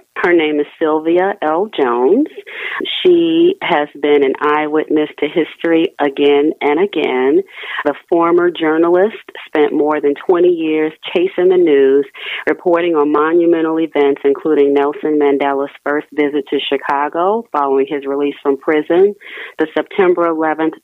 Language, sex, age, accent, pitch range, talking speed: English, female, 40-59, American, 145-175 Hz, 130 wpm